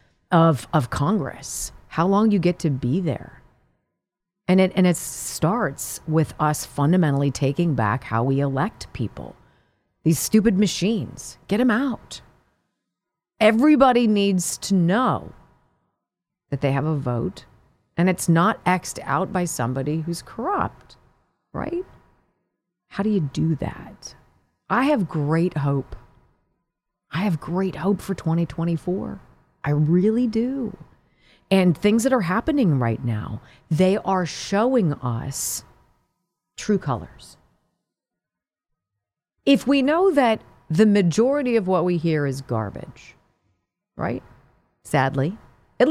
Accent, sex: American, female